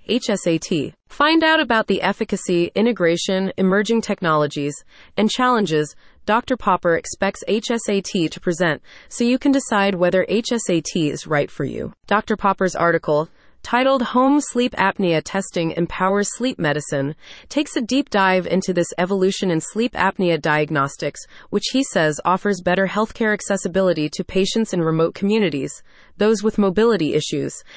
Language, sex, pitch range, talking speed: English, female, 170-230 Hz, 140 wpm